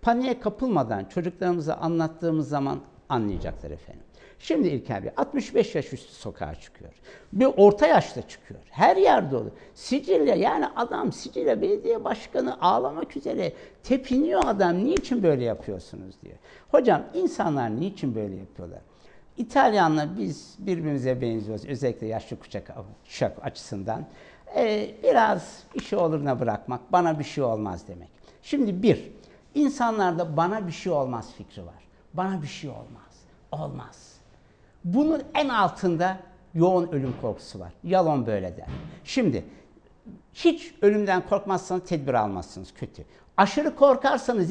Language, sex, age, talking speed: Turkish, male, 60-79, 125 wpm